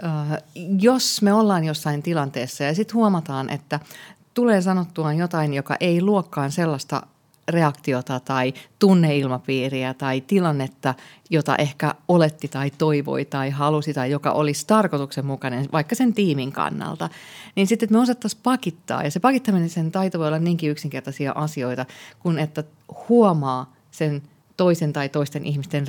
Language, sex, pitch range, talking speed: Finnish, female, 145-190 Hz, 135 wpm